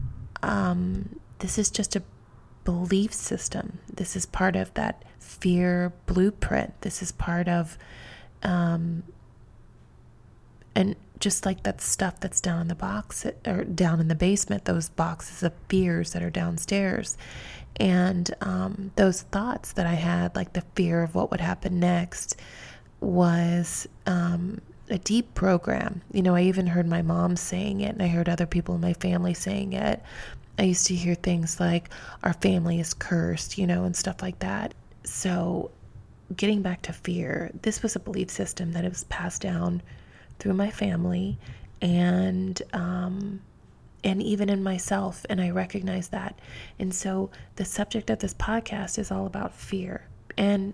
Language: English